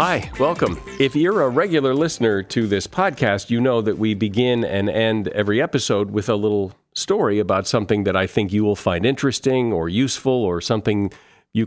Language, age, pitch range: English, 50-69, 105-125 Hz